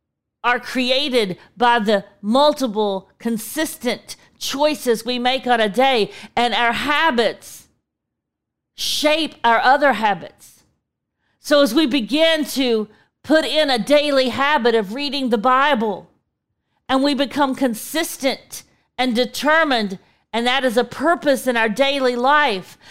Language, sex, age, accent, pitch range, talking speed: English, female, 40-59, American, 240-290 Hz, 125 wpm